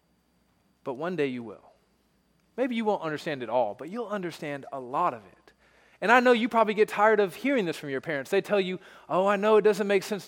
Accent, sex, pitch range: American, male, 130-195 Hz